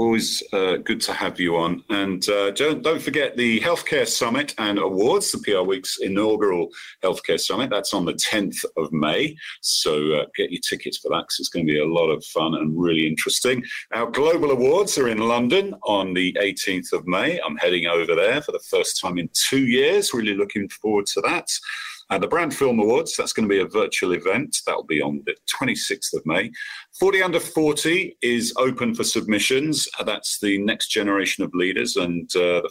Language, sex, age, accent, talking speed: English, male, 40-59, British, 205 wpm